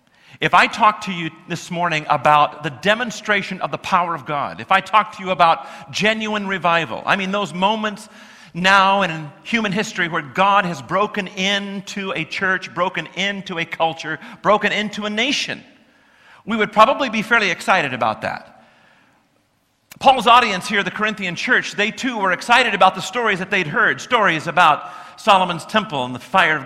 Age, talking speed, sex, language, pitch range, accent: 50-69, 175 wpm, male, English, 175-215 Hz, American